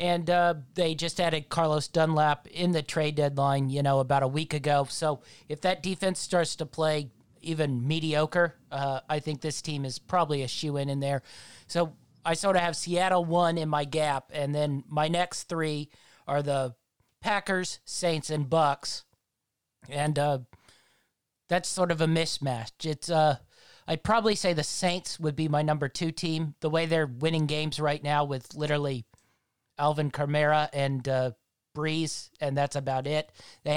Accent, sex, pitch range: American, male, 140-165 Hz